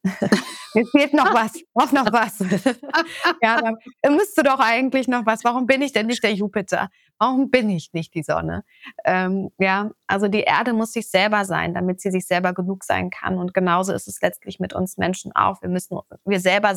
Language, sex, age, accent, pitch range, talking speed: German, female, 20-39, German, 185-215 Hz, 200 wpm